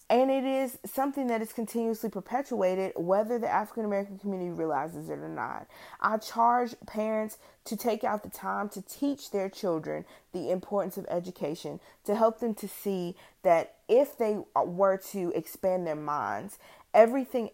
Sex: female